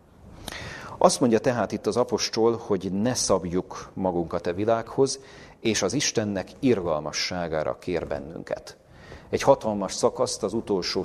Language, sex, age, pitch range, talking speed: Hungarian, male, 40-59, 95-110 Hz, 130 wpm